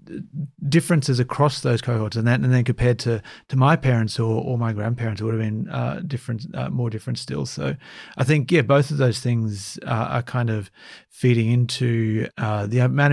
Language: English